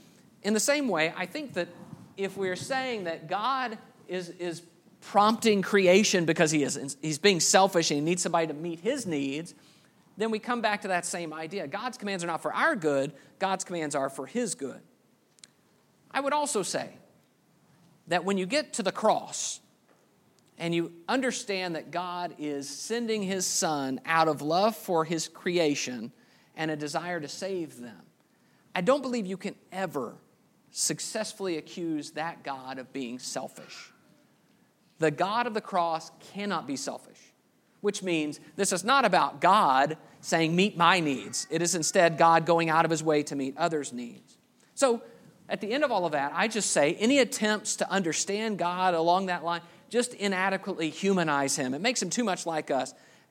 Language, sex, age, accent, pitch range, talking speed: English, male, 50-69, American, 155-205 Hz, 175 wpm